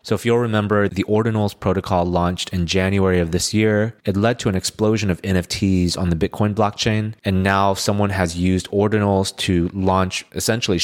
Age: 20-39